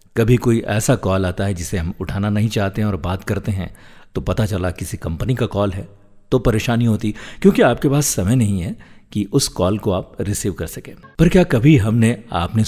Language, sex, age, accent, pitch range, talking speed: Hindi, male, 50-69, native, 100-135 Hz, 220 wpm